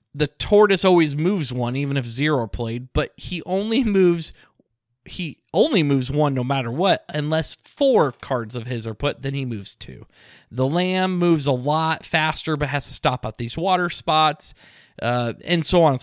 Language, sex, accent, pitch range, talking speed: English, male, American, 130-180 Hz, 185 wpm